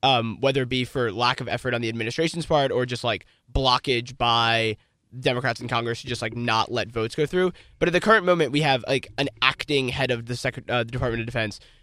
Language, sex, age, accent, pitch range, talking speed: English, male, 20-39, American, 115-150 Hz, 235 wpm